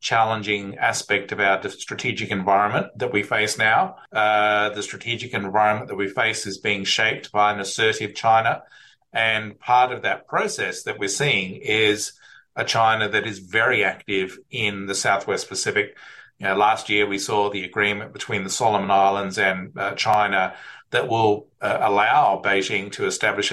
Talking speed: 160 wpm